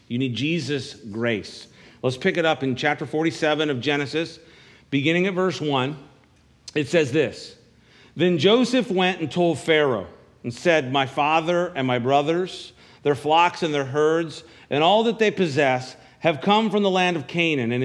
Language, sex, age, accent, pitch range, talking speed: English, male, 50-69, American, 140-180 Hz, 170 wpm